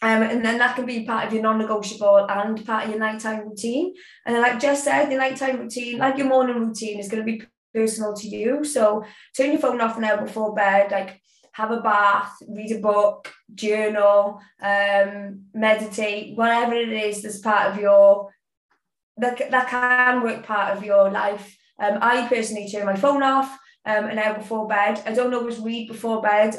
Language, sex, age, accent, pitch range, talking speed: English, female, 20-39, British, 205-240 Hz, 190 wpm